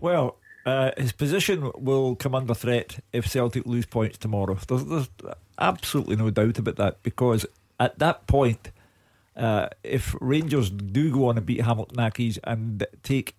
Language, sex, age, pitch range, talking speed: English, male, 50-69, 105-135 Hz, 160 wpm